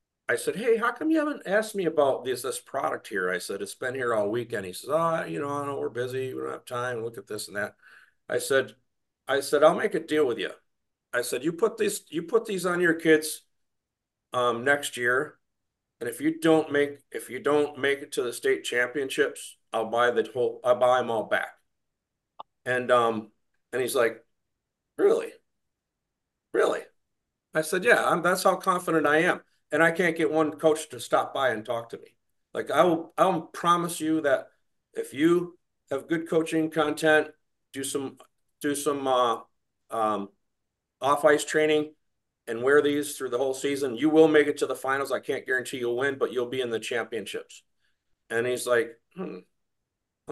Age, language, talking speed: 50-69, English, 195 wpm